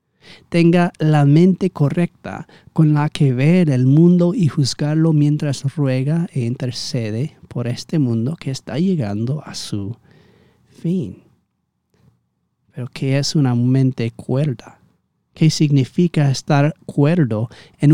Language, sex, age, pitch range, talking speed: Spanish, male, 40-59, 130-165 Hz, 120 wpm